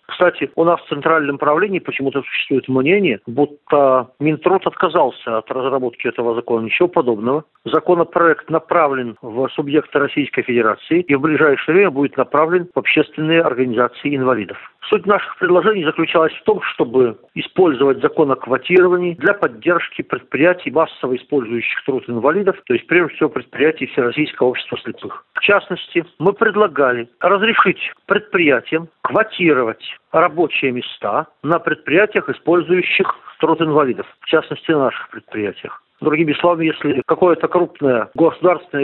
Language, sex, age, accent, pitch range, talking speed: Russian, male, 50-69, native, 135-180 Hz, 130 wpm